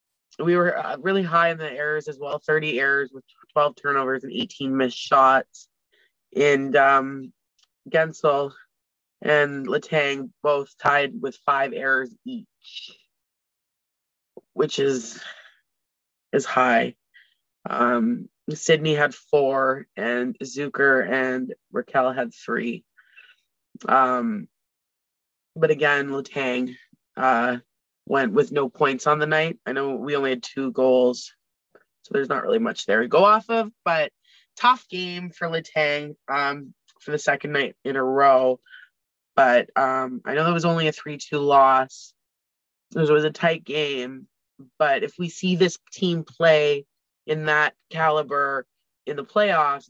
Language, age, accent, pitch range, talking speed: English, 20-39, American, 135-160 Hz, 140 wpm